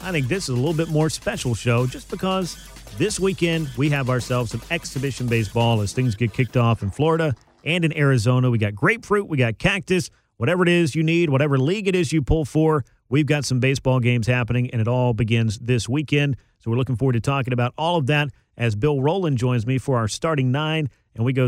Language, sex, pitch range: English, male, 120-155 Hz